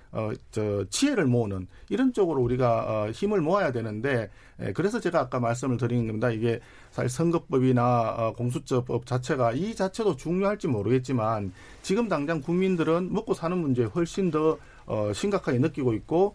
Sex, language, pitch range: male, Korean, 120-160 Hz